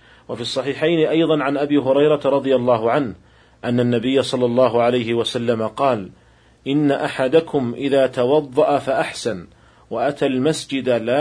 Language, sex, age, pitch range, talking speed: Arabic, male, 40-59, 115-140 Hz, 130 wpm